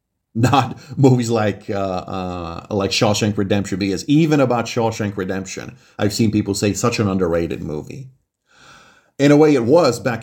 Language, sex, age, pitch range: English, male, 40-59, 100-120 Hz